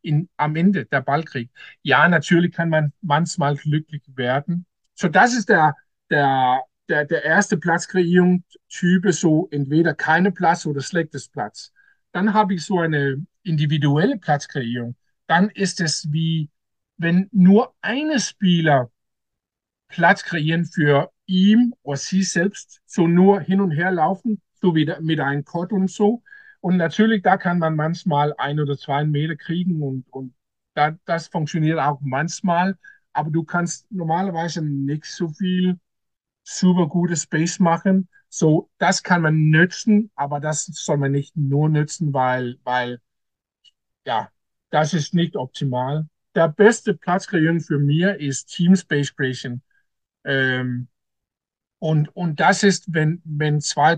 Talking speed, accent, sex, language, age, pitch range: 145 wpm, German, male, German, 50-69, 150-185 Hz